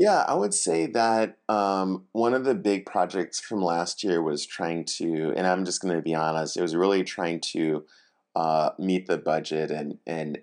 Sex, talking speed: male, 200 wpm